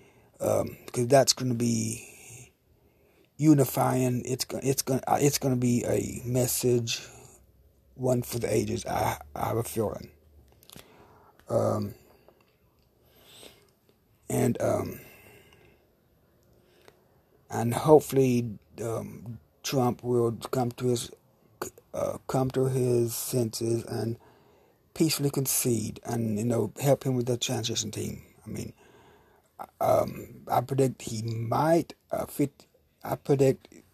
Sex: male